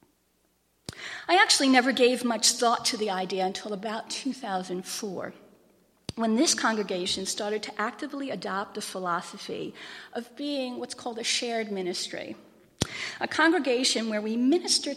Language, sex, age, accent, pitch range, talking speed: English, female, 40-59, American, 195-265 Hz, 130 wpm